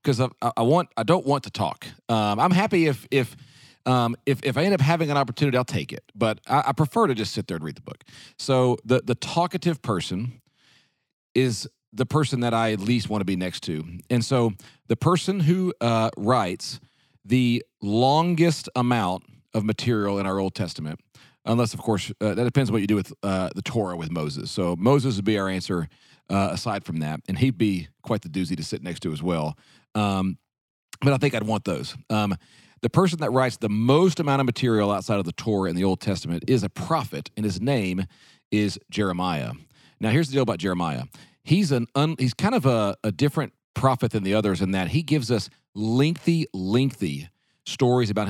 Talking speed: 210 wpm